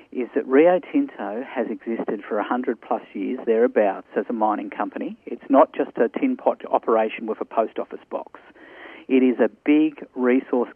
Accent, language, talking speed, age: Australian, English, 180 wpm, 50-69